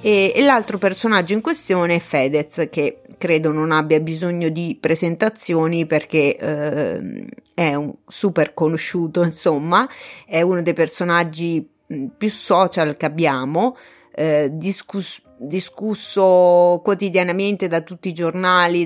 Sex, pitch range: female, 155-195 Hz